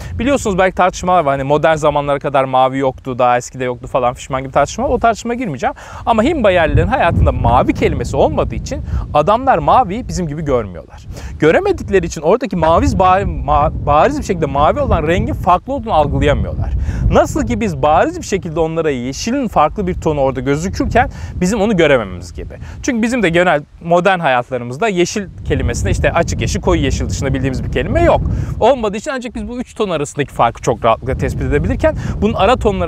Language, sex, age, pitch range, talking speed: Turkish, male, 30-49, 135-220 Hz, 180 wpm